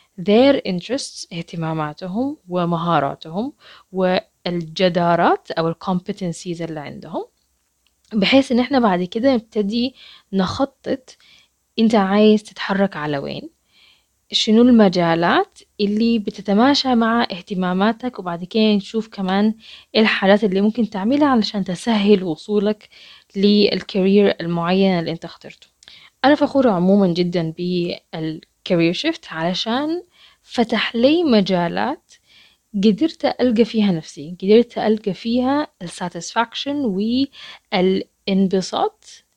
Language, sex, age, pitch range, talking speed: Arabic, female, 20-39, 180-235 Hz, 95 wpm